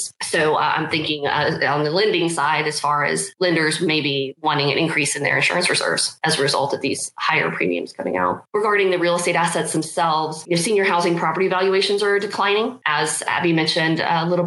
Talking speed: 205 wpm